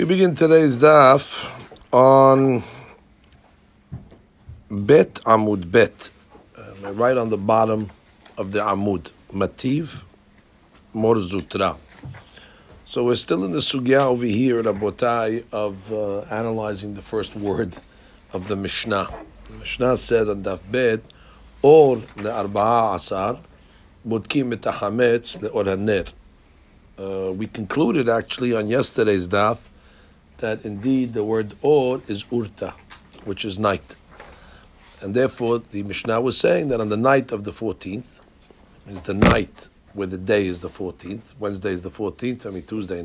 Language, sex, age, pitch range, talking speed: English, male, 60-79, 100-130 Hz, 130 wpm